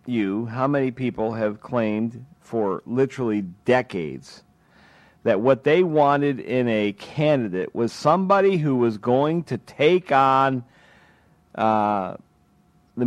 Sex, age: male, 40-59